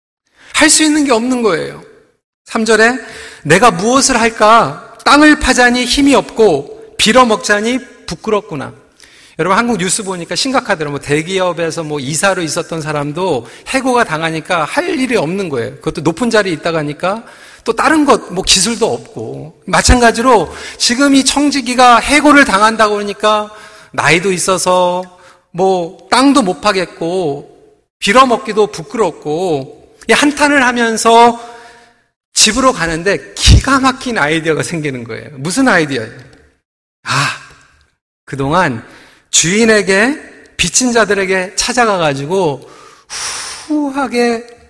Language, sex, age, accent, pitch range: Korean, male, 40-59, native, 175-245 Hz